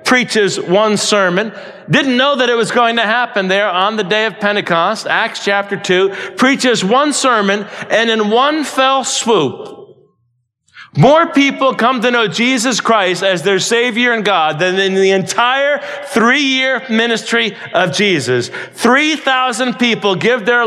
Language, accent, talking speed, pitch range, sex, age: English, American, 150 wpm, 185-265 Hz, male, 40-59